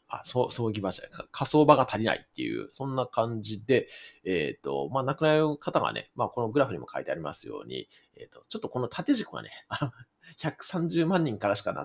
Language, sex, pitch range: Japanese, male, 105-170 Hz